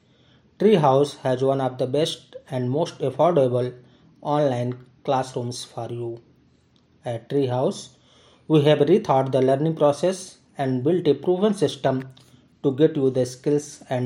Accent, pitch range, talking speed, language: native, 125-150 Hz, 135 wpm, Hindi